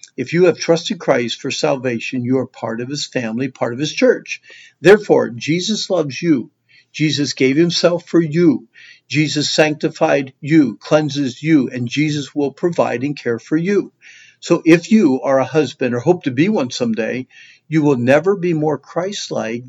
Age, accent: 50-69, American